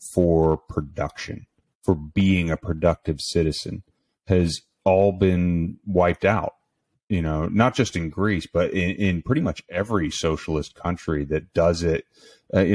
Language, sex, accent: English, male, American